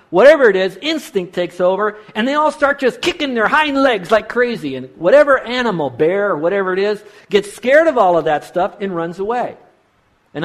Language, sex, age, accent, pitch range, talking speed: English, male, 50-69, American, 145-225 Hz, 205 wpm